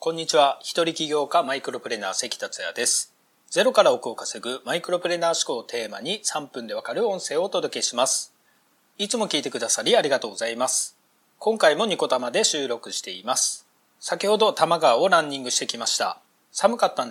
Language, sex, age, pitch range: Japanese, male, 40-59, 145-220 Hz